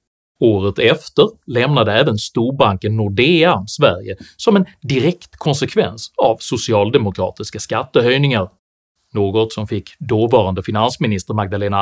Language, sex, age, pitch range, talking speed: Swedish, male, 30-49, 105-160 Hz, 100 wpm